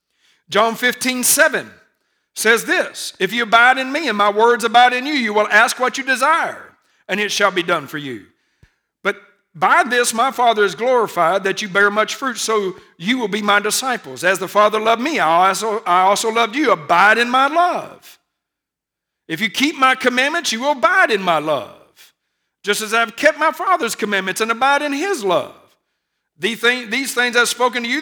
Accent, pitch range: American, 200-250 Hz